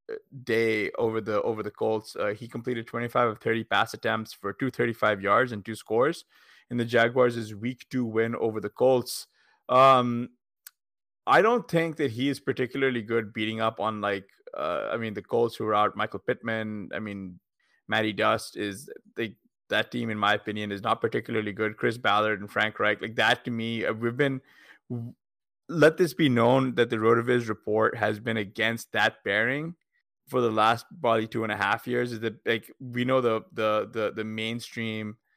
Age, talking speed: 20-39, 190 wpm